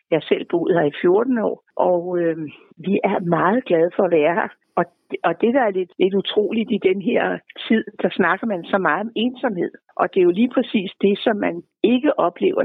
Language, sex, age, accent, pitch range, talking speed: Danish, female, 60-79, native, 180-240 Hz, 225 wpm